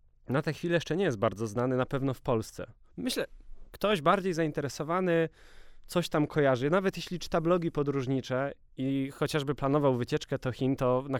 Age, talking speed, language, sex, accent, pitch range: 20-39, 170 wpm, Polish, male, native, 125-160 Hz